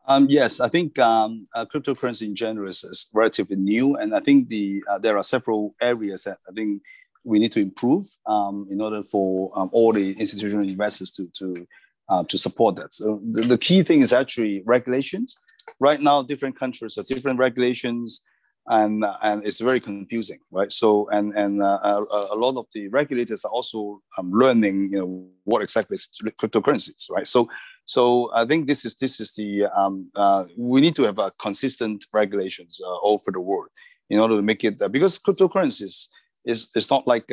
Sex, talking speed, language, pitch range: male, 200 wpm, English, 100-130 Hz